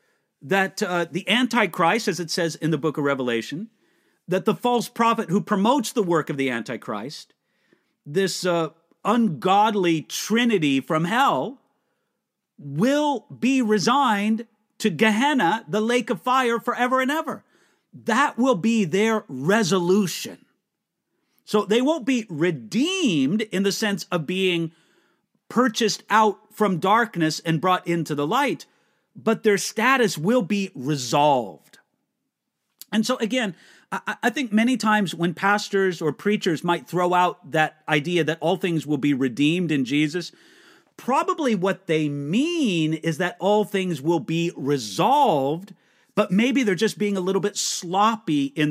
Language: English